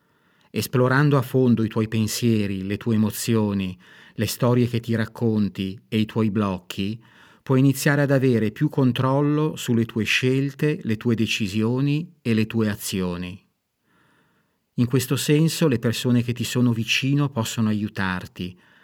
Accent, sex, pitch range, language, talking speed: native, male, 105-125 Hz, Italian, 145 wpm